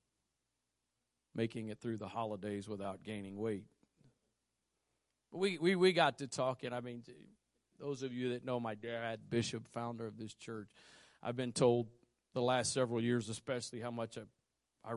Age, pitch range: 40-59, 110-140 Hz